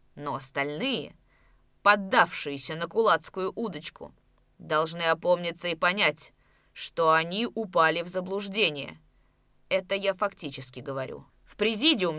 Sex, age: female, 20-39